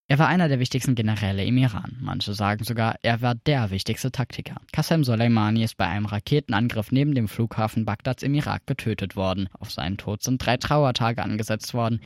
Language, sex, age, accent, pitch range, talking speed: German, male, 10-29, German, 105-130 Hz, 190 wpm